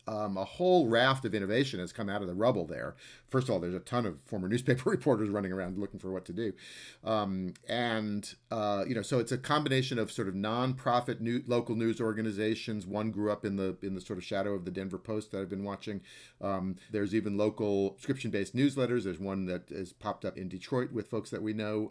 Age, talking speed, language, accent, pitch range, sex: 40-59, 235 wpm, English, American, 95-115 Hz, male